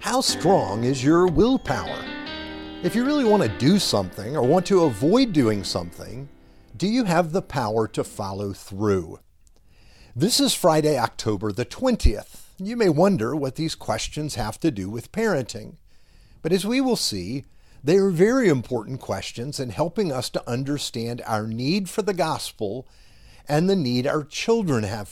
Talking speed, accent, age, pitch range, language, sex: 165 wpm, American, 50-69, 115-185 Hz, English, male